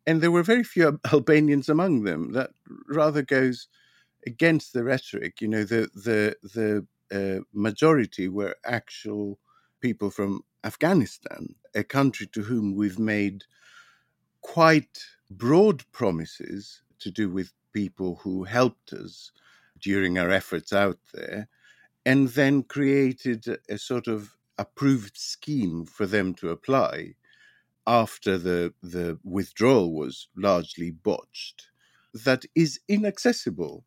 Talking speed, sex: 120 wpm, male